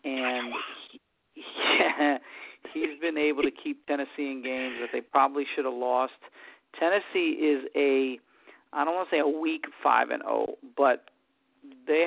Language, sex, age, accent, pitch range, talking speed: English, male, 50-69, American, 145-195 Hz, 155 wpm